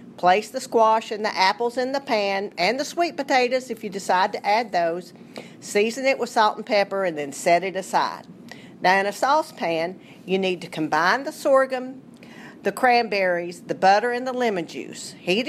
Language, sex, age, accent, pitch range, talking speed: English, female, 50-69, American, 185-240 Hz, 190 wpm